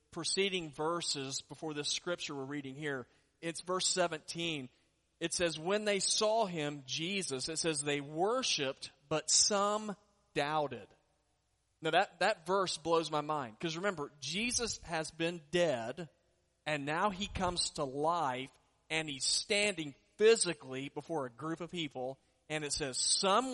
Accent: American